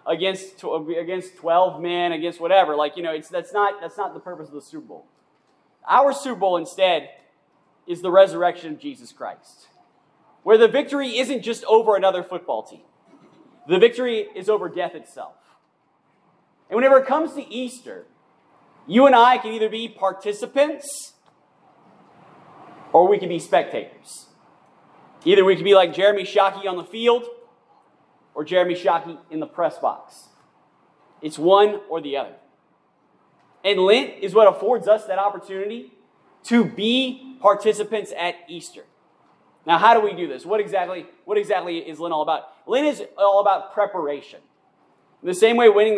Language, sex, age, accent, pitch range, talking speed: English, male, 30-49, American, 175-240 Hz, 155 wpm